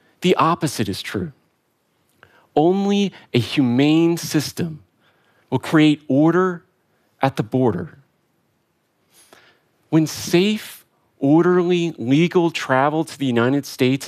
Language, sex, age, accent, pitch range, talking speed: Russian, male, 40-59, American, 125-165 Hz, 100 wpm